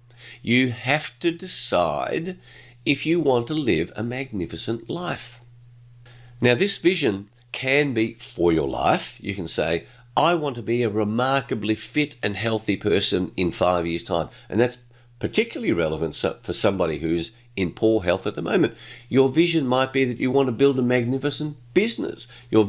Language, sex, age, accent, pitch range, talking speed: English, male, 50-69, Australian, 115-135 Hz, 165 wpm